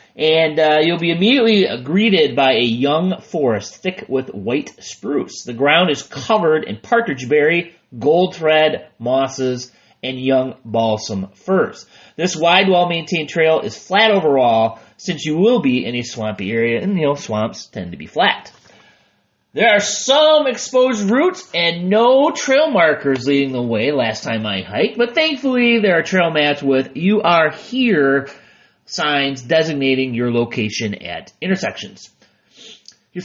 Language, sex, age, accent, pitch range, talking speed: English, male, 30-49, American, 135-215 Hz, 150 wpm